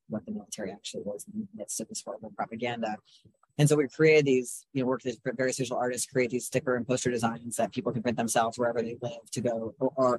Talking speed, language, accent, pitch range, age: 240 wpm, English, American, 120-140 Hz, 30-49